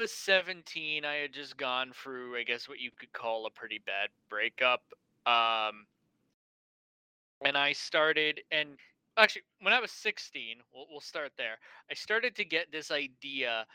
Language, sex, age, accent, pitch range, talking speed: English, male, 20-39, American, 120-155 Hz, 155 wpm